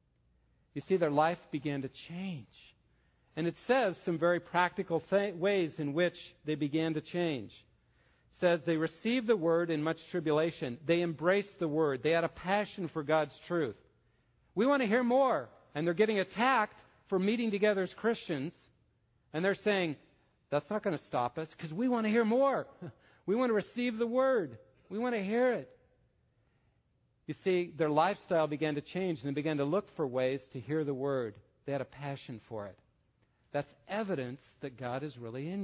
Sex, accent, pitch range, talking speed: male, American, 135-190 Hz, 185 wpm